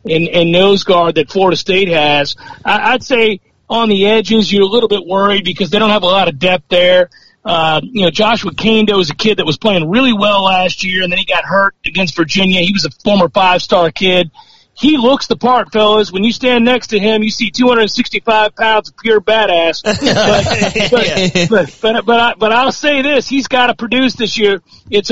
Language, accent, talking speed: English, American, 215 wpm